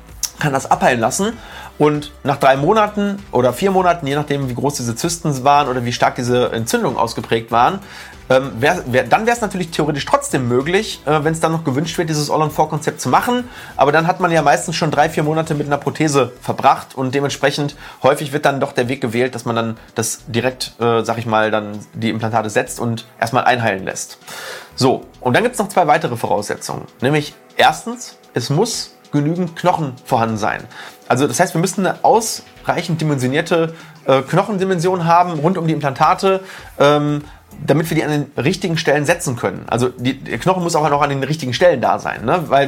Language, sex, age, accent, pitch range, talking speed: German, male, 30-49, German, 130-170 Hz, 200 wpm